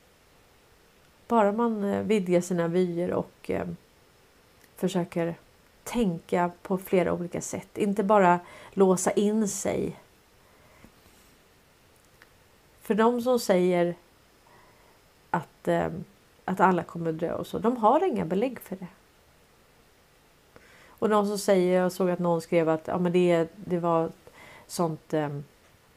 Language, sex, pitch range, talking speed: Swedish, female, 170-210 Hz, 115 wpm